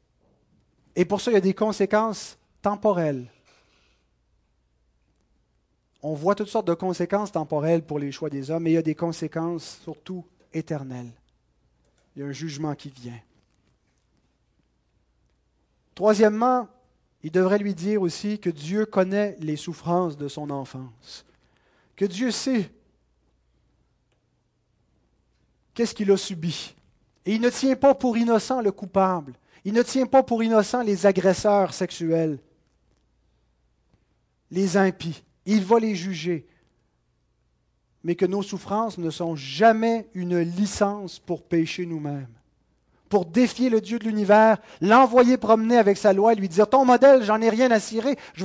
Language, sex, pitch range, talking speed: French, male, 145-215 Hz, 145 wpm